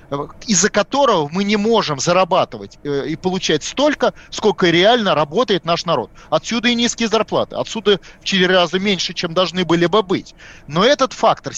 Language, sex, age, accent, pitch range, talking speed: Russian, male, 30-49, native, 175-225 Hz, 160 wpm